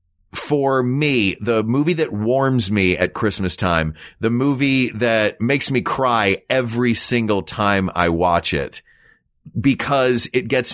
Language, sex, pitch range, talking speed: English, male, 100-125 Hz, 140 wpm